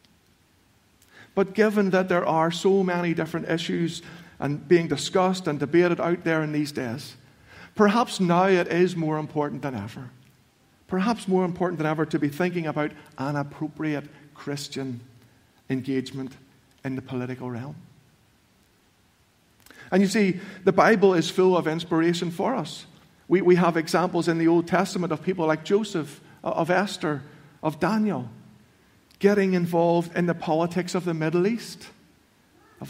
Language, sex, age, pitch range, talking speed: English, male, 50-69, 145-180 Hz, 150 wpm